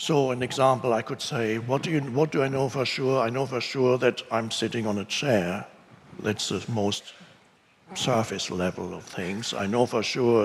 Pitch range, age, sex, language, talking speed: 110-130 Hz, 60-79, male, English, 205 wpm